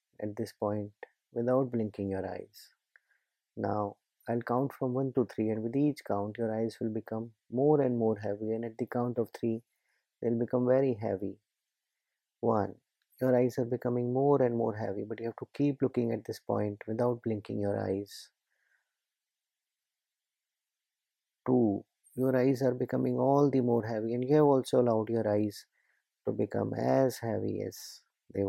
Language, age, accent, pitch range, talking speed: English, 30-49, Indian, 105-125 Hz, 170 wpm